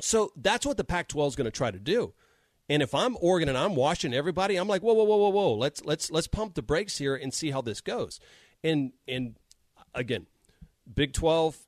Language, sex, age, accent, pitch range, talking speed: English, male, 40-59, American, 120-155 Hz, 220 wpm